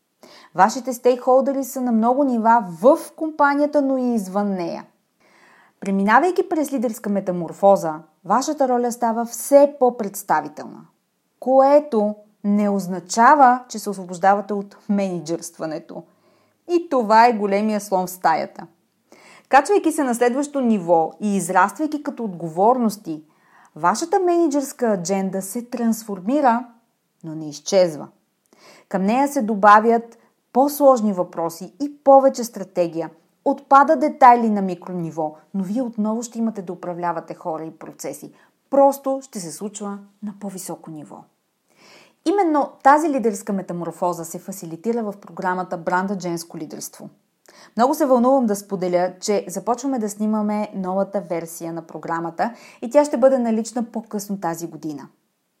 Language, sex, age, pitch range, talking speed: Bulgarian, female, 30-49, 185-255 Hz, 125 wpm